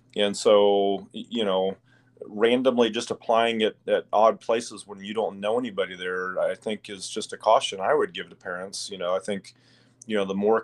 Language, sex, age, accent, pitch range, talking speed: English, male, 30-49, American, 100-125 Hz, 205 wpm